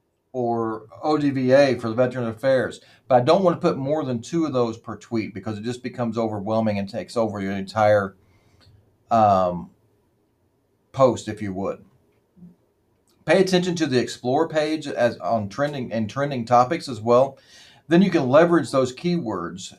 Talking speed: 165 wpm